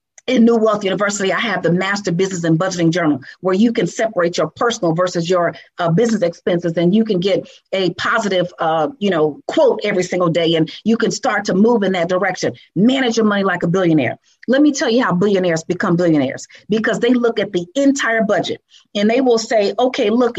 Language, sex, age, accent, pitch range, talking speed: English, female, 40-59, American, 185-250 Hz, 210 wpm